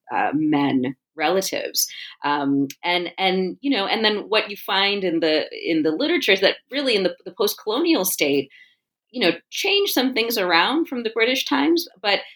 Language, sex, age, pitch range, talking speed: English, female, 30-49, 150-220 Hz, 180 wpm